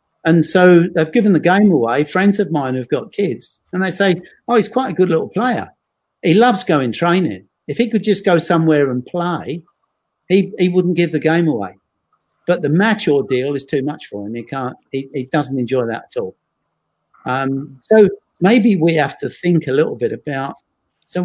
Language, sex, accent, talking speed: English, male, British, 205 wpm